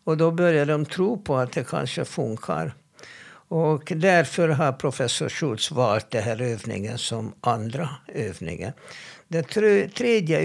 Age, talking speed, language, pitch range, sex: 60-79, 140 wpm, Swedish, 115-160 Hz, male